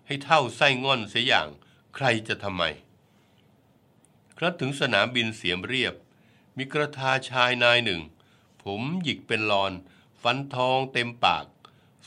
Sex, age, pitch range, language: male, 60-79, 105-135 Hz, Thai